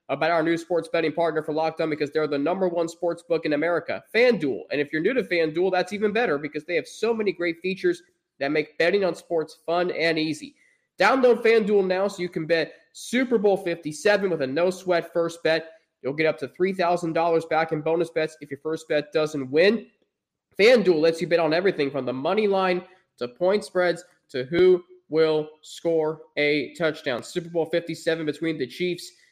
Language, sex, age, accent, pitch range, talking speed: English, male, 20-39, American, 155-180 Hz, 200 wpm